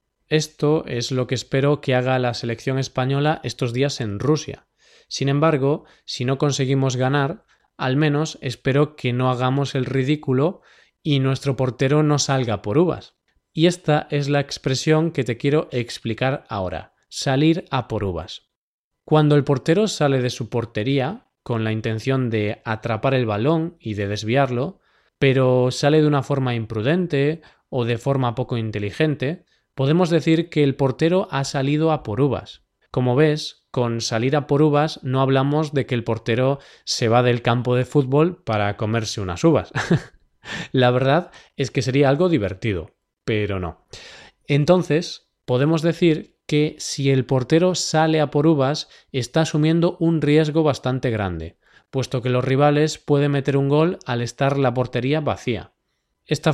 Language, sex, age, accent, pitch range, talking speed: Spanish, male, 20-39, Spanish, 125-150 Hz, 160 wpm